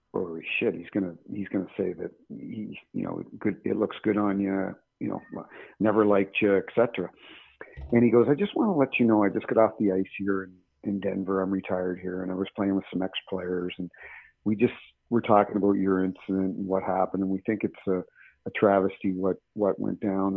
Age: 50-69